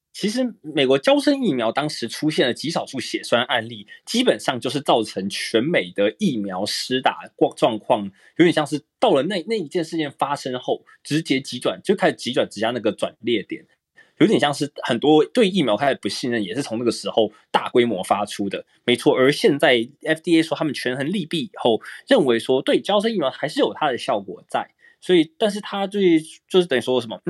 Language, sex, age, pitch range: Chinese, male, 20-39, 120-190 Hz